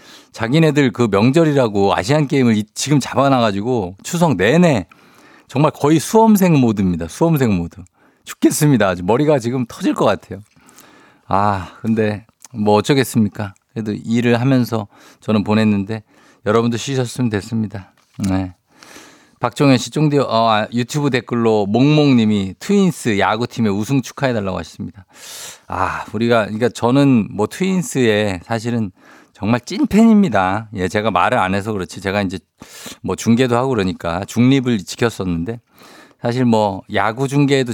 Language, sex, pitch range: Korean, male, 105-135 Hz